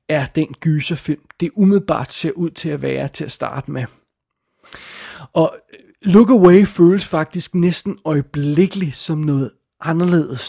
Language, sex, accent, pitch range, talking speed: Danish, male, native, 145-175 Hz, 135 wpm